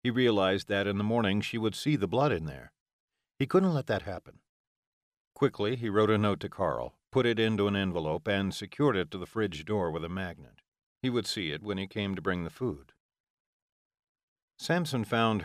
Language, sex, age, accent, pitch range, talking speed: English, male, 50-69, American, 95-115 Hz, 205 wpm